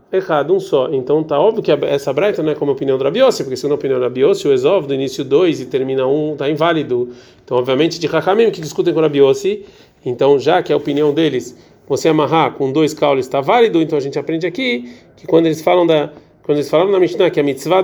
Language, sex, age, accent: Portuguese, male, 40-59, Brazilian